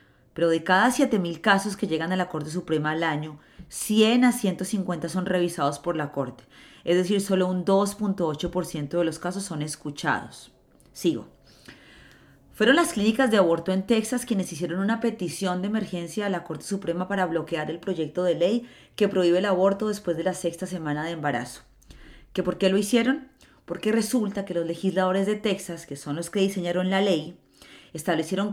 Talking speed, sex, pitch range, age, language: 180 wpm, female, 165-200 Hz, 30-49, Spanish